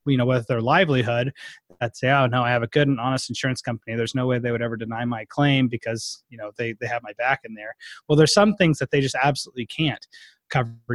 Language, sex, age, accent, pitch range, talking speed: English, male, 30-49, American, 125-150 Hz, 250 wpm